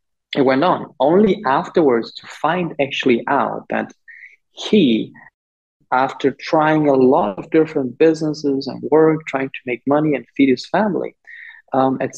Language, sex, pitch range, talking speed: English, male, 125-155 Hz, 150 wpm